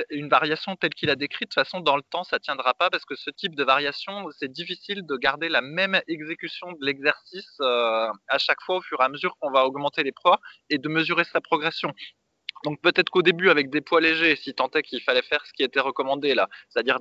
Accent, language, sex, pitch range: French, French, male, 135-165 Hz